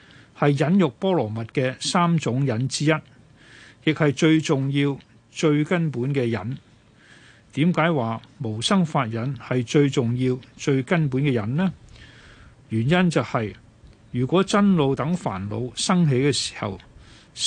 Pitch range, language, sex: 115-155 Hz, Chinese, male